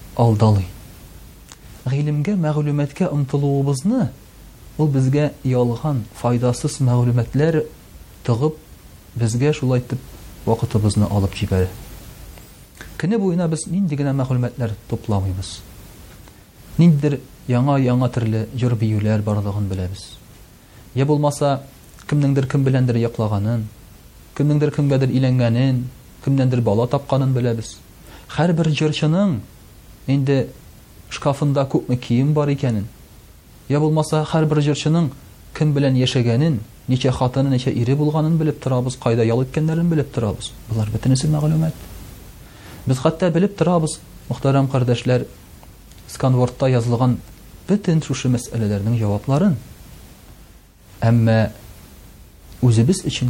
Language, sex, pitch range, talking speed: Russian, male, 110-145 Hz, 85 wpm